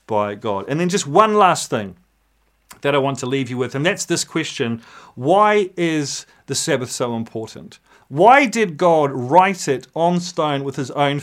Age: 40-59